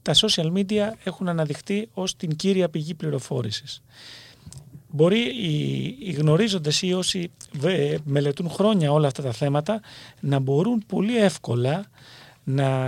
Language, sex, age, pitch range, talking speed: Greek, male, 40-59, 135-190 Hz, 125 wpm